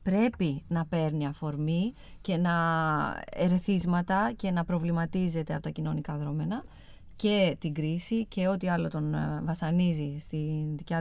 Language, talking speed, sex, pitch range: Greek, 130 wpm, female, 155-210 Hz